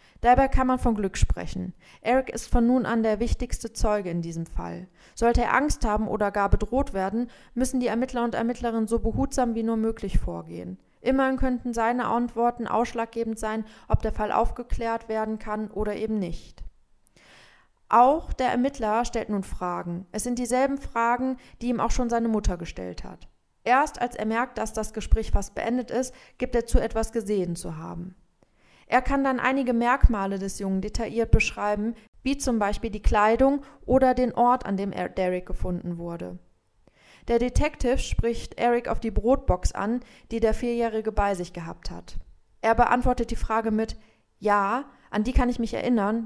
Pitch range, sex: 195-245 Hz, female